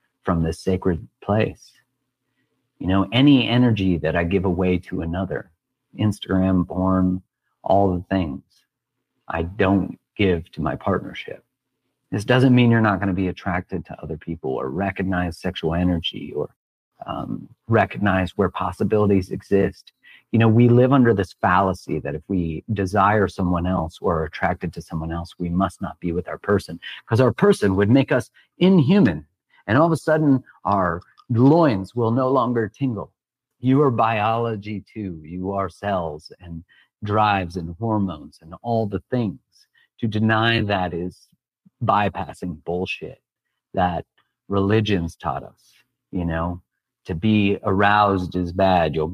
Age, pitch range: 40-59, 90-115 Hz